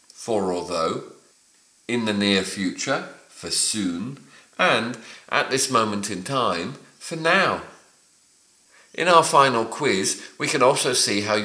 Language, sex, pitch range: English, male, 105-150 Hz